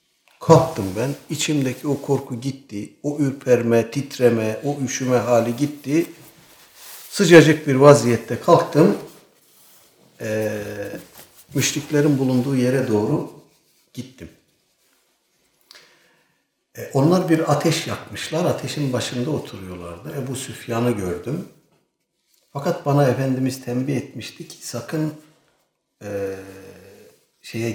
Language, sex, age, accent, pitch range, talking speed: Turkish, male, 60-79, native, 105-145 Hz, 95 wpm